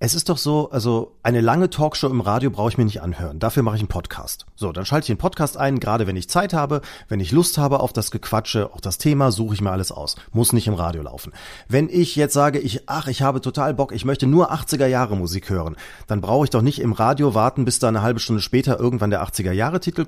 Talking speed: 265 wpm